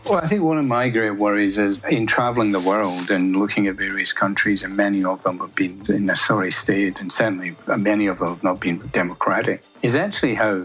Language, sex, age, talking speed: English, male, 60-79, 225 wpm